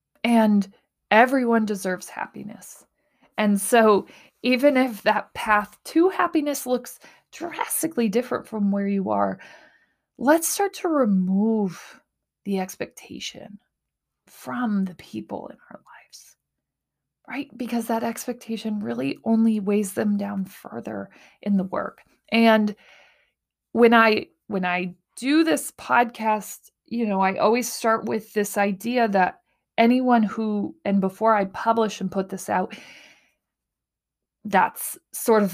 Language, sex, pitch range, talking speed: English, female, 190-235 Hz, 125 wpm